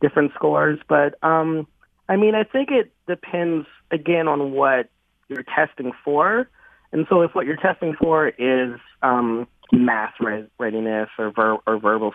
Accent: American